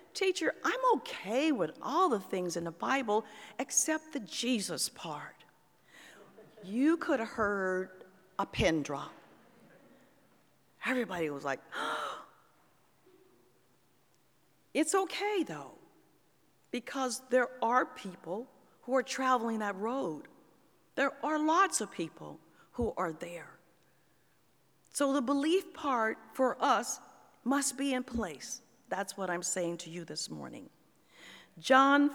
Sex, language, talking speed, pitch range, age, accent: female, English, 120 wpm, 185-275 Hz, 50-69, American